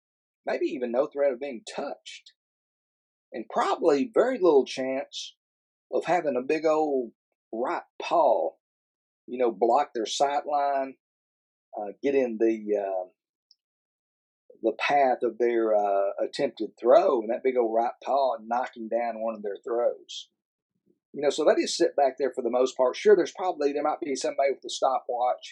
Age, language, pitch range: 40-59, English, 115-180 Hz